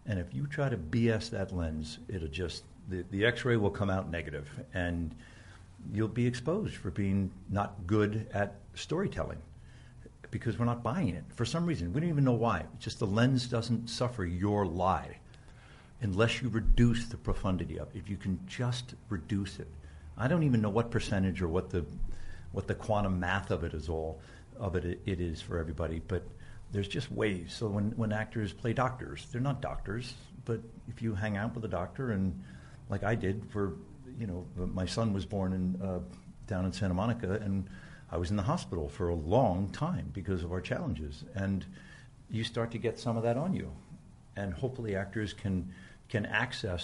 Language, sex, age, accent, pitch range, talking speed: English, male, 60-79, American, 90-115 Hz, 195 wpm